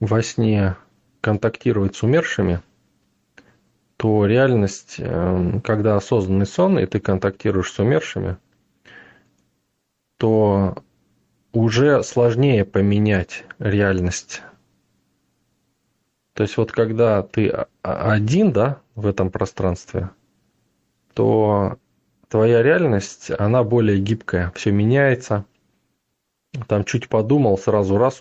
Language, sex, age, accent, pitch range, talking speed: Russian, male, 20-39, native, 95-115 Hz, 90 wpm